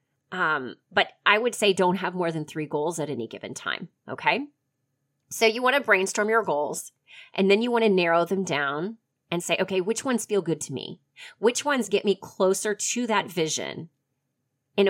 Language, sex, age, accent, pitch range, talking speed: English, female, 30-49, American, 165-230 Hz, 195 wpm